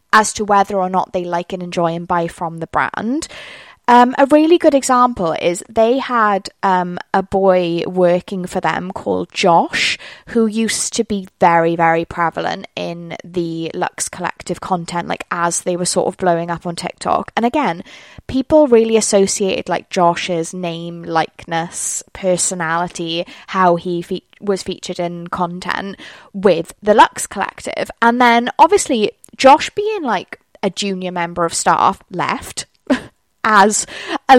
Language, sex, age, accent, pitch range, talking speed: English, female, 20-39, British, 175-230 Hz, 150 wpm